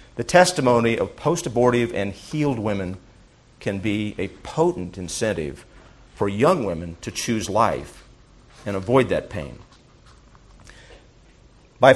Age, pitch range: 50-69, 100-125 Hz